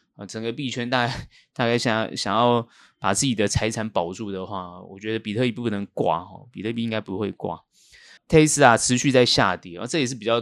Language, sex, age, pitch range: Chinese, male, 20-39, 105-130 Hz